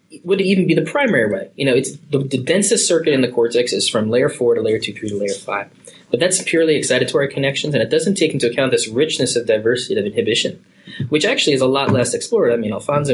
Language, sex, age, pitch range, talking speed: English, male, 20-39, 120-190 Hz, 250 wpm